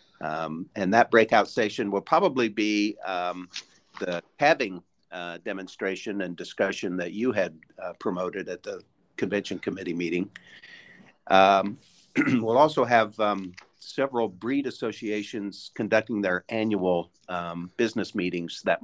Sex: male